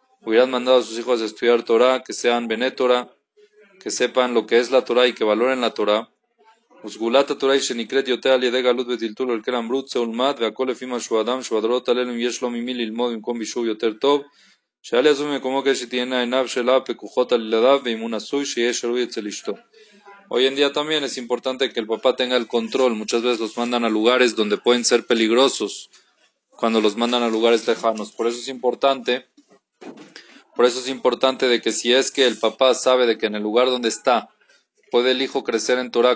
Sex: male